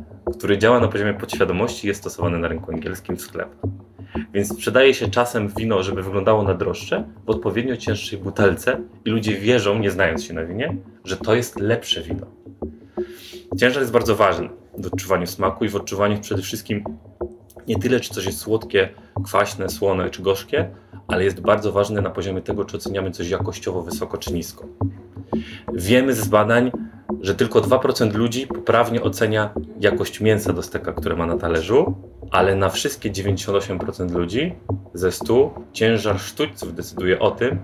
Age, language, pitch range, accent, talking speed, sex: 30-49, Polish, 95-115 Hz, native, 165 wpm, male